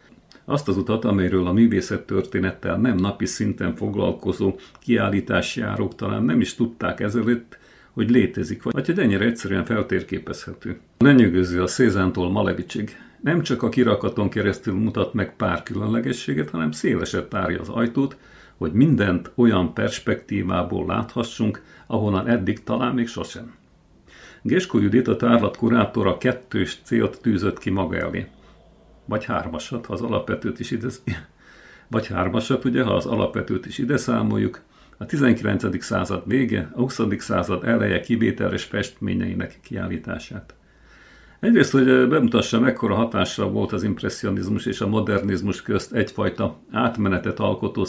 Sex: male